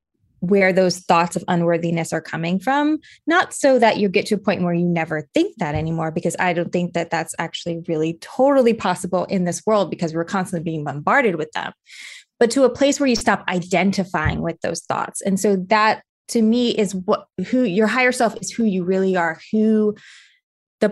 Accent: American